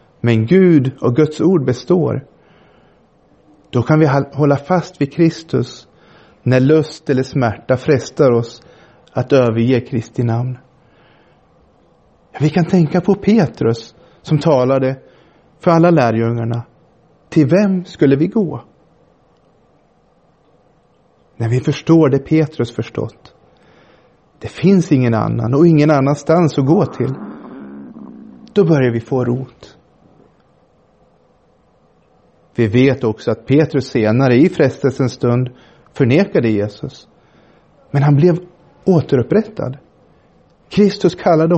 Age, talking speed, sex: 30-49, 110 wpm, male